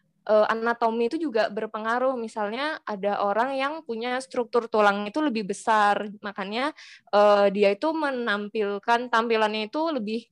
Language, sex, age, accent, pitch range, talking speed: Indonesian, female, 20-39, native, 205-240 Hz, 120 wpm